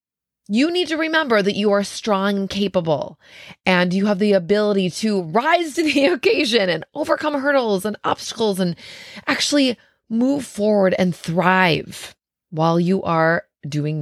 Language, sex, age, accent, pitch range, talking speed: English, female, 20-39, American, 165-220 Hz, 150 wpm